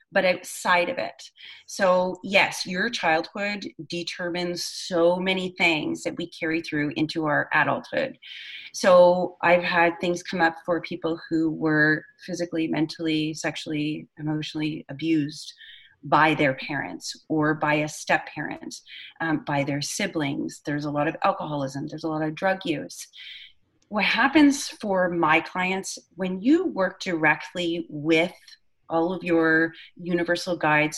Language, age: English, 30-49